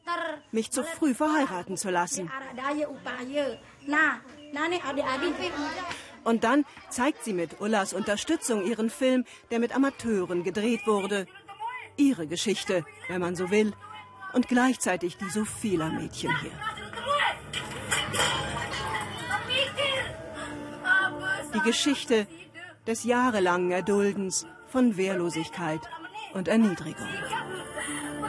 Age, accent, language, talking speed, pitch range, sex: 40-59, German, German, 90 wpm, 190-280 Hz, female